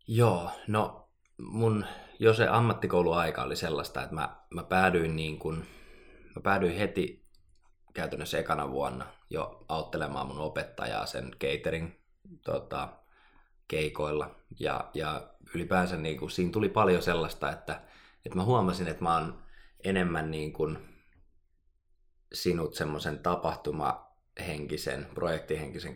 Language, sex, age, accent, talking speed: Finnish, male, 20-39, native, 120 wpm